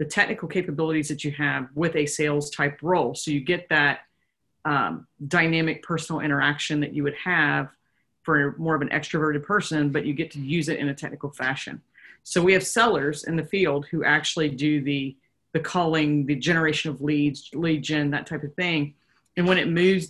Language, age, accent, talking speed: English, 30-49, American, 195 wpm